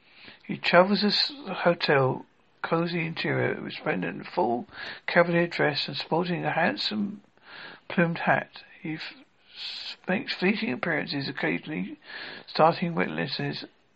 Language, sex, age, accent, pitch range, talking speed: English, male, 60-79, British, 170-205 Hz, 105 wpm